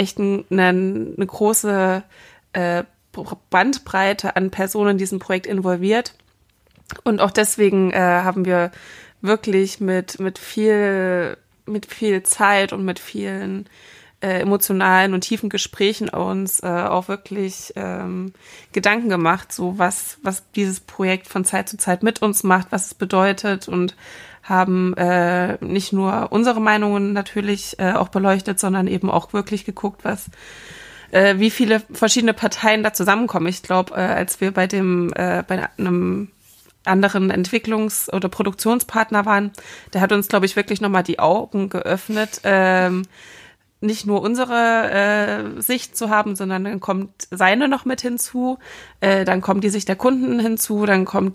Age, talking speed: 20-39, 150 wpm